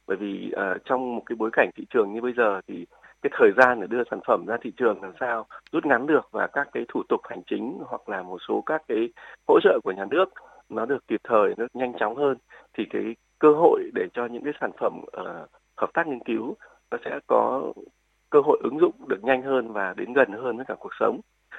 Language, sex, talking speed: Vietnamese, male, 240 wpm